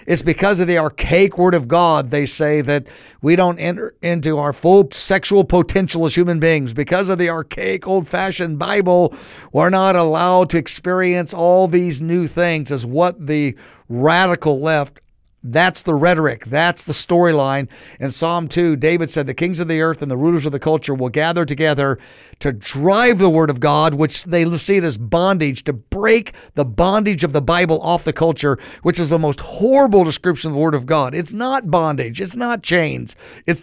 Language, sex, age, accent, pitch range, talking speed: English, male, 50-69, American, 145-180 Hz, 190 wpm